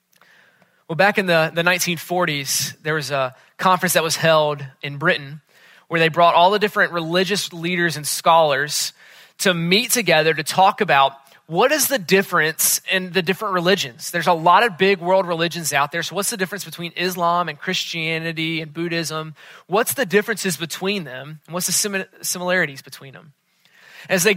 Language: English